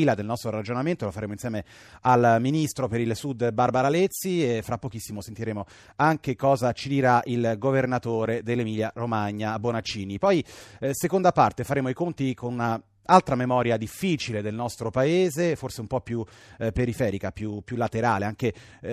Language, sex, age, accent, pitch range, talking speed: Italian, male, 30-49, native, 110-135 Hz, 165 wpm